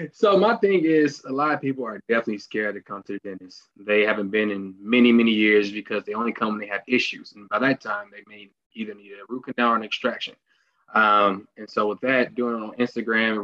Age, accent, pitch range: 20-39, American, 105-130 Hz